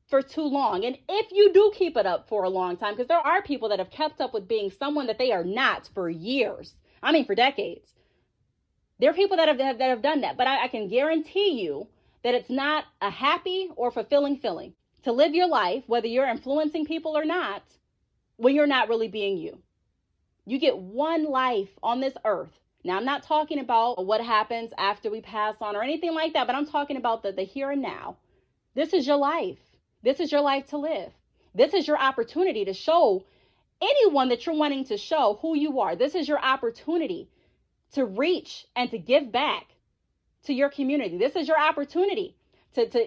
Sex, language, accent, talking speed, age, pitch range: female, English, American, 210 wpm, 30-49, 230-325 Hz